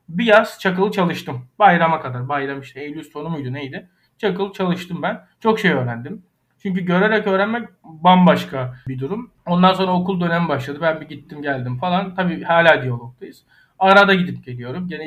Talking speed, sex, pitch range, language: 165 wpm, male, 145-195 Hz, Turkish